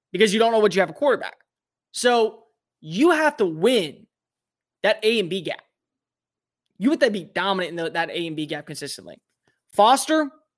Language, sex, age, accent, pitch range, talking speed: English, male, 20-39, American, 185-230 Hz, 185 wpm